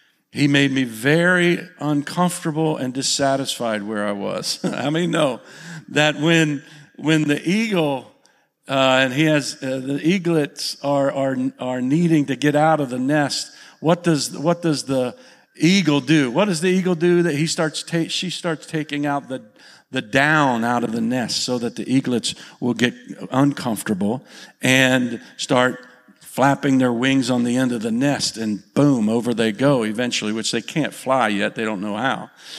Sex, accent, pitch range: male, American, 115-150 Hz